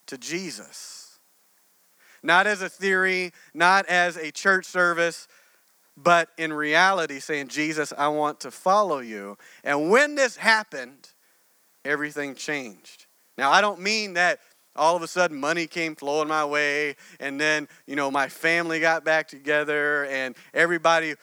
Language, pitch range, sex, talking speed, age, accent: English, 140-180 Hz, male, 145 wpm, 40-59, American